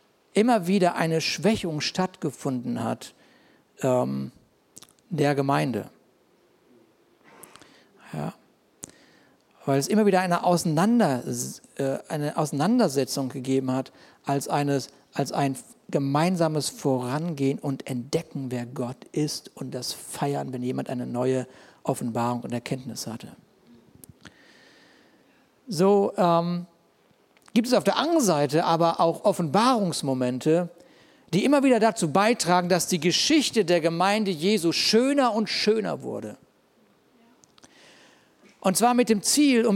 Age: 60-79